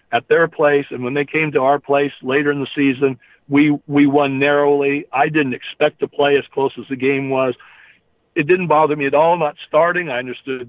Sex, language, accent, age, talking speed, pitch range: male, English, American, 60-79, 220 wpm, 125-155 Hz